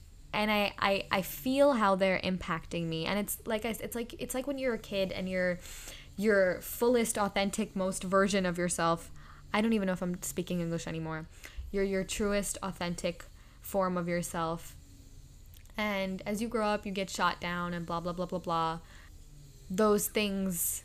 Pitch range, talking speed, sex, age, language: 170-210 Hz, 180 wpm, female, 10-29, English